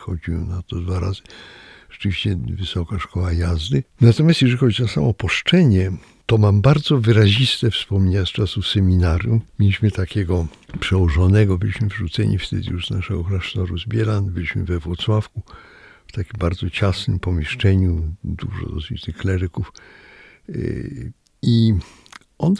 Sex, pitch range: male, 90-110 Hz